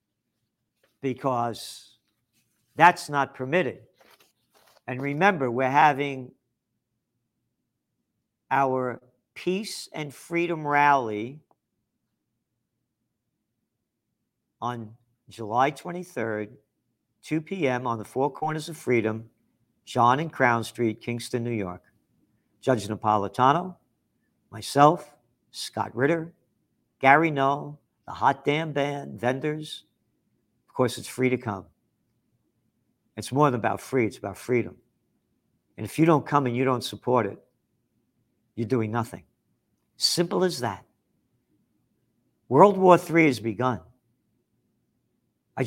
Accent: American